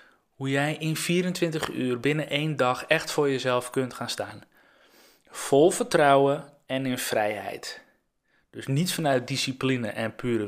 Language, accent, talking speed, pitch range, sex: Dutch, Dutch, 145 wpm, 120-145 Hz, male